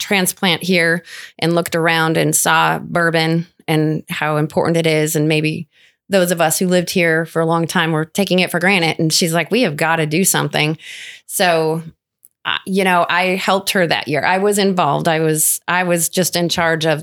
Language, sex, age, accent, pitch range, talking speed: English, female, 20-39, American, 160-185 Hz, 210 wpm